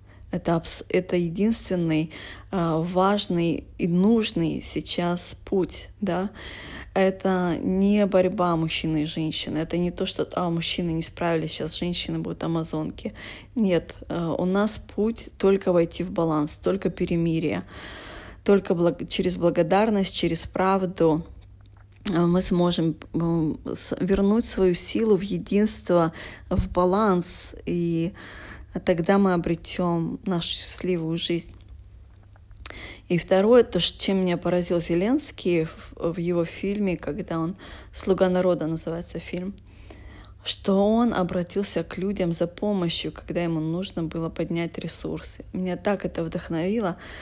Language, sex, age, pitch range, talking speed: Russian, female, 20-39, 165-190 Hz, 115 wpm